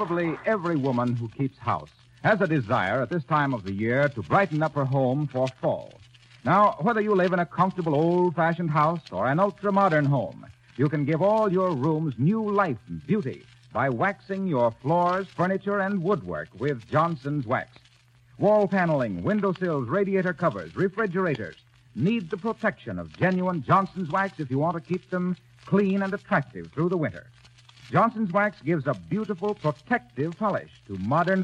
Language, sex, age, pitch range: English, male, 60-79, 125-190 Hz